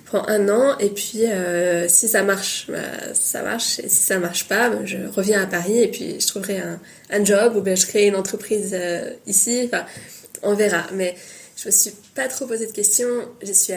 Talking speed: 220 wpm